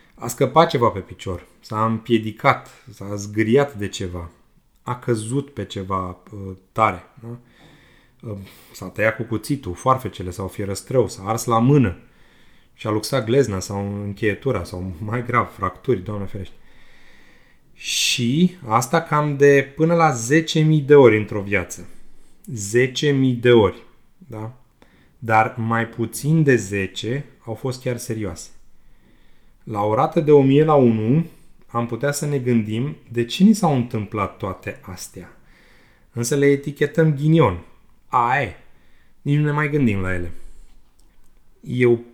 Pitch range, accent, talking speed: 100-135 Hz, native, 135 wpm